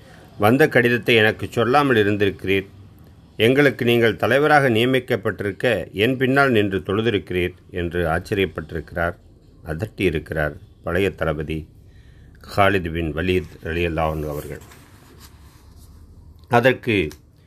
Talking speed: 80 wpm